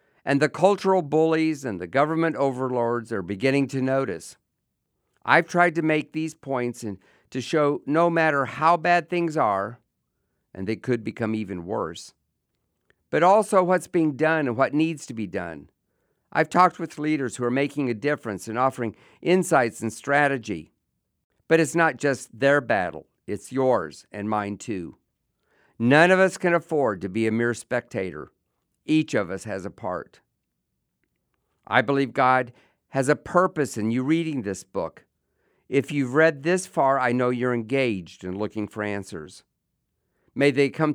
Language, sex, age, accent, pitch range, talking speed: English, male, 50-69, American, 110-155 Hz, 165 wpm